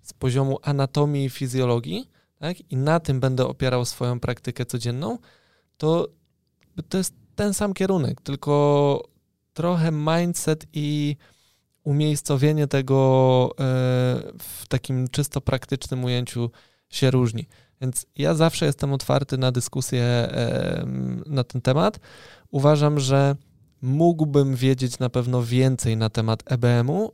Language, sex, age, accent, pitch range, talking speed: Polish, male, 20-39, native, 125-145 Hz, 115 wpm